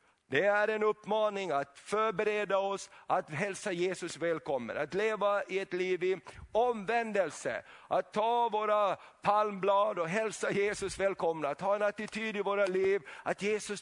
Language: Swedish